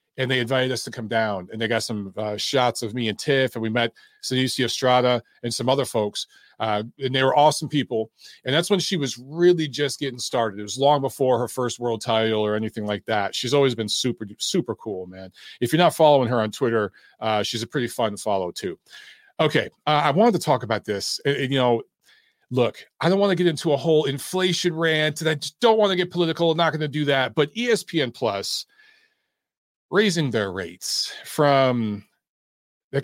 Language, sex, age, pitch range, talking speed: English, male, 40-59, 120-165 Hz, 215 wpm